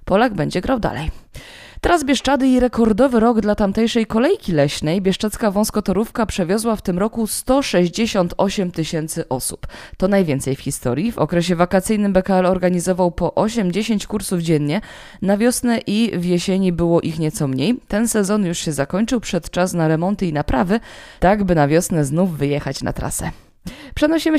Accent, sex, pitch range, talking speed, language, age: native, female, 170-225 Hz, 160 wpm, Polish, 20-39